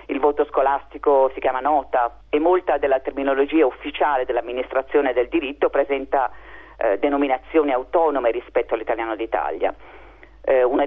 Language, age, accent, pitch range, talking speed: Italian, 40-59, native, 130-170 Hz, 120 wpm